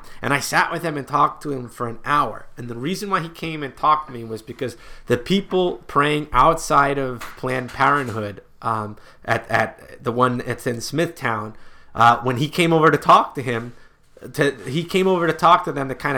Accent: American